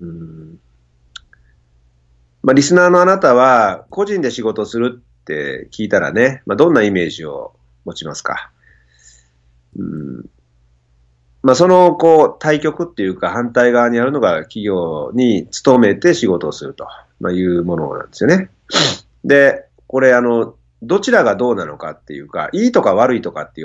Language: Japanese